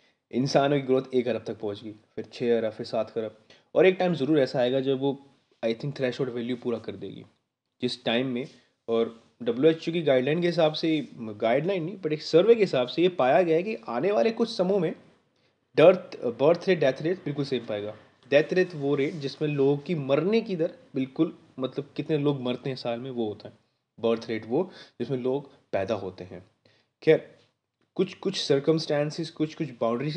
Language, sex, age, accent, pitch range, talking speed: Hindi, male, 20-39, native, 115-155 Hz, 200 wpm